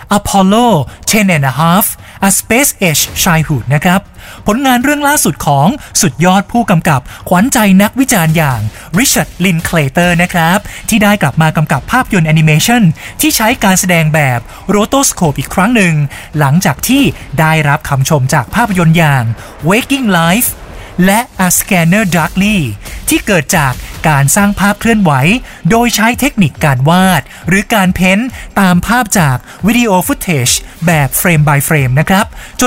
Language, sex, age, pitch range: Thai, male, 20-39, 155-215 Hz